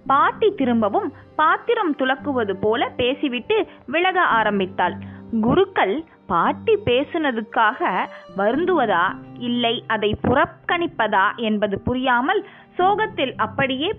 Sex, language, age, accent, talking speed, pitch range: female, Tamil, 20-39, native, 75 wpm, 215-350 Hz